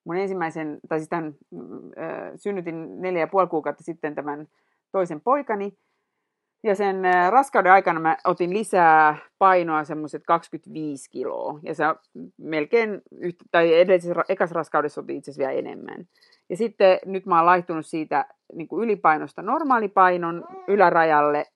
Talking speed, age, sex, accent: 135 wpm, 30-49, female, native